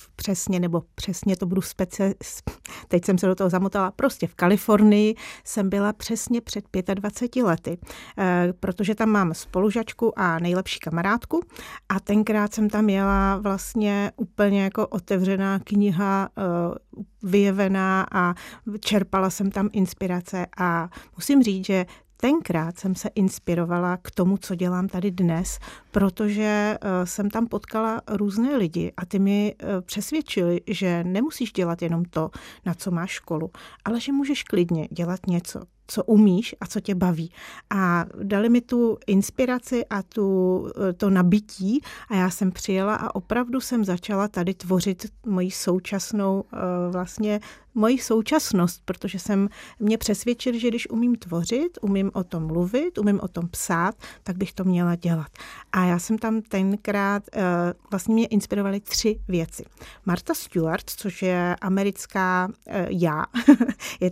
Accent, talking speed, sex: native, 140 wpm, female